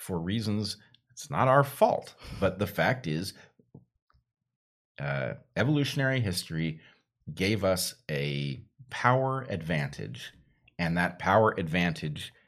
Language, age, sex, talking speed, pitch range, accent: English, 40-59, male, 105 wpm, 85-130 Hz, American